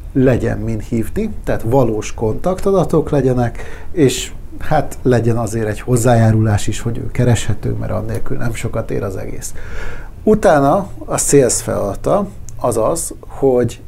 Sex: male